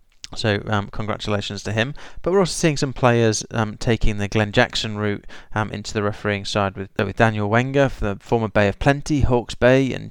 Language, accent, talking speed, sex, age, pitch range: English, British, 210 wpm, male, 20-39, 100-120 Hz